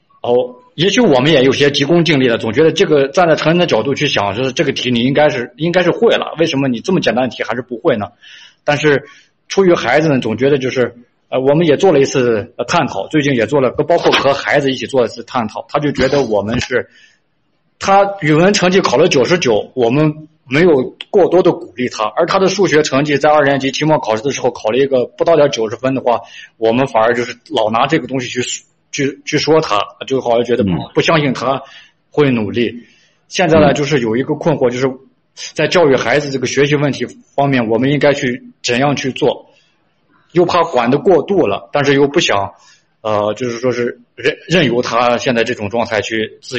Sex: male